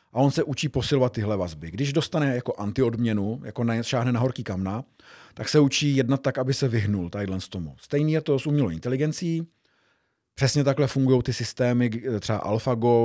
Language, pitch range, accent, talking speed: Czech, 110-140 Hz, native, 190 wpm